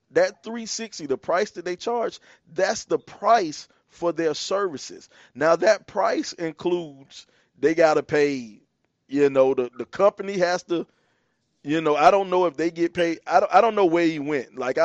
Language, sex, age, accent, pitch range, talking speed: English, male, 20-39, American, 140-180 Hz, 185 wpm